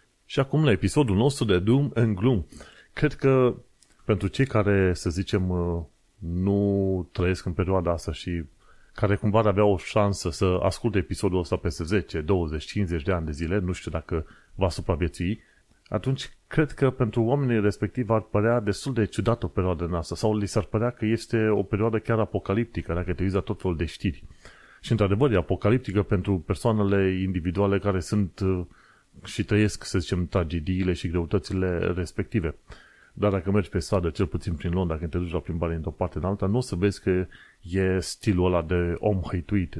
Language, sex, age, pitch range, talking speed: Romanian, male, 30-49, 90-105 Hz, 185 wpm